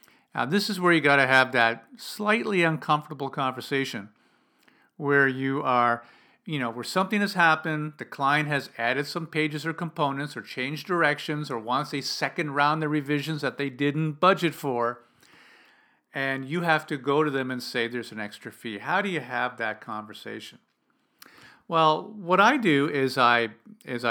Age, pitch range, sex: 50-69, 125-165 Hz, male